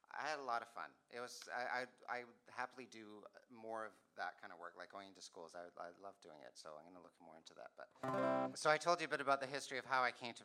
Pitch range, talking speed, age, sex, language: 90-110 Hz, 295 wpm, 30-49, male, English